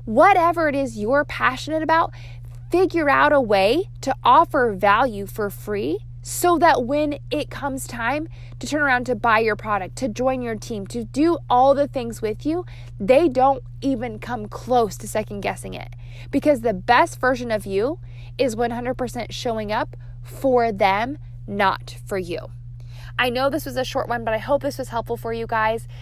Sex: female